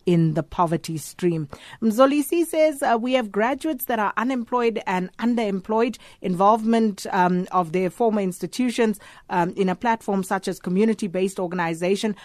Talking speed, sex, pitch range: 140 wpm, female, 175-205 Hz